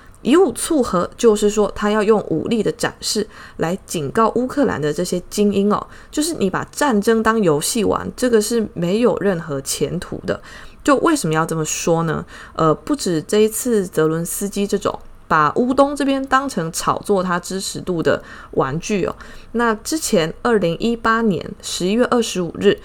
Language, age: Chinese, 20-39